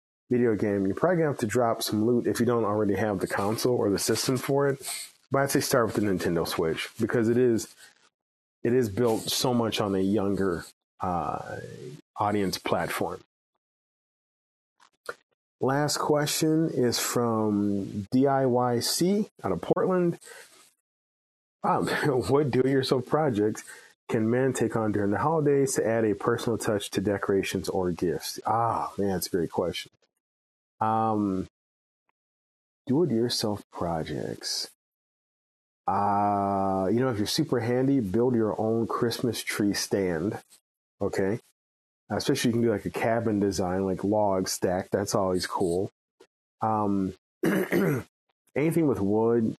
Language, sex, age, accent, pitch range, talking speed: English, male, 30-49, American, 100-125 Hz, 140 wpm